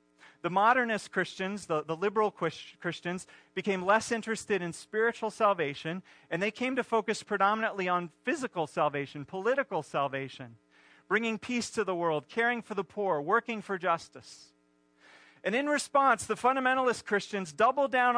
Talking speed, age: 145 wpm, 40-59